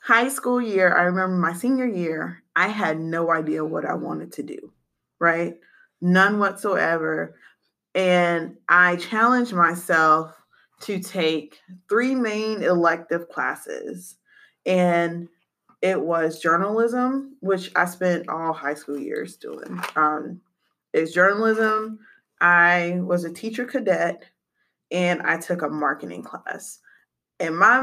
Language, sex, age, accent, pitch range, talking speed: English, female, 20-39, American, 165-205 Hz, 125 wpm